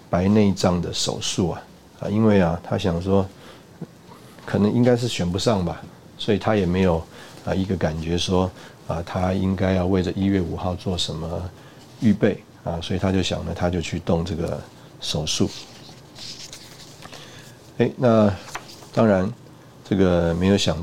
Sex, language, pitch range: male, Chinese, 85-105 Hz